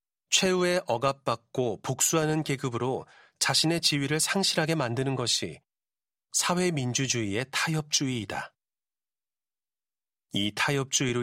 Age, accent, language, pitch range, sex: 40-59, native, Korean, 120-160 Hz, male